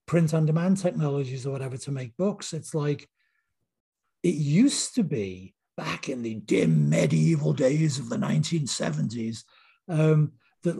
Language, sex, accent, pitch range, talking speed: English, male, British, 140-190 Hz, 135 wpm